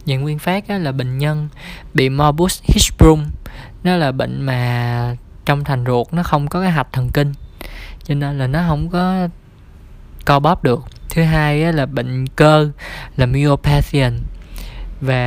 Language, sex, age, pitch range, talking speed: Vietnamese, male, 20-39, 130-155 Hz, 160 wpm